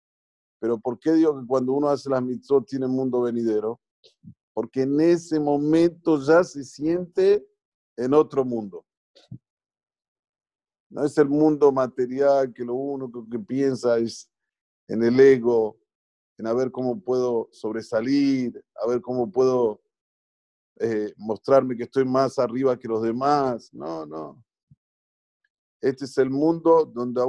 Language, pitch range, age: Spanish, 120-140 Hz, 50-69